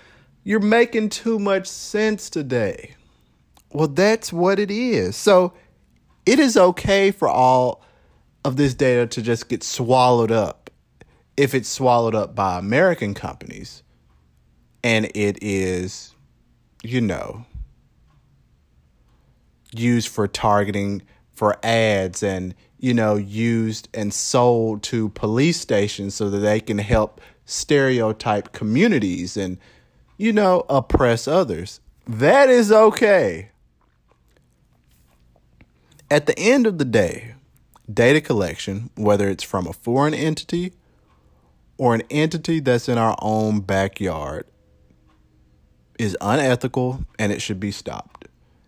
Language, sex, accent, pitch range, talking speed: English, male, American, 95-145 Hz, 115 wpm